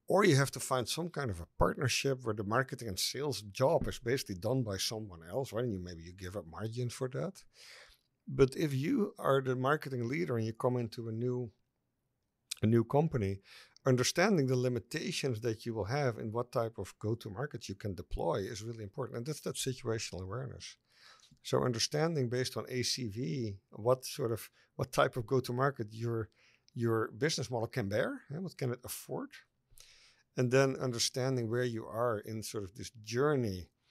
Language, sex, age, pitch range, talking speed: English, male, 50-69, 100-130 Hz, 185 wpm